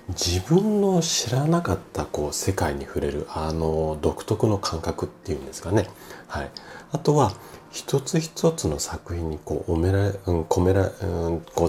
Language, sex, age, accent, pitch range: Japanese, male, 40-59, native, 85-125 Hz